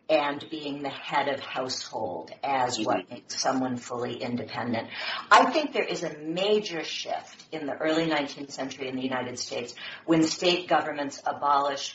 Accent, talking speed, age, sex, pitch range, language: American, 155 wpm, 50-69, female, 150-235 Hz, English